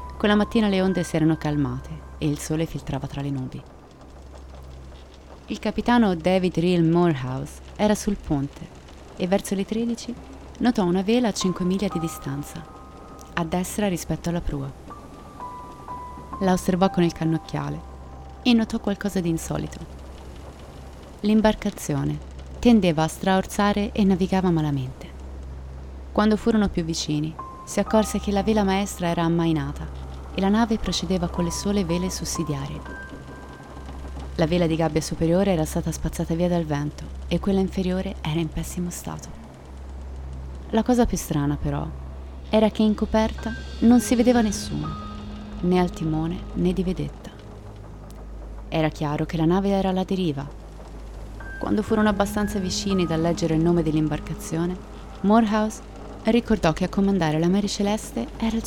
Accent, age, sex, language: native, 30-49, female, Italian